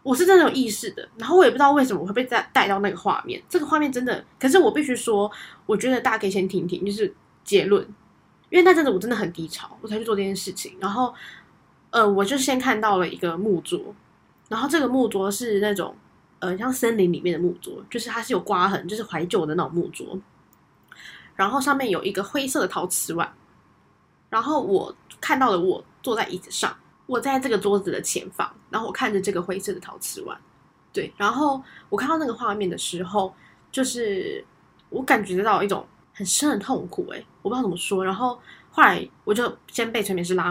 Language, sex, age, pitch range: Chinese, female, 10-29, 190-265 Hz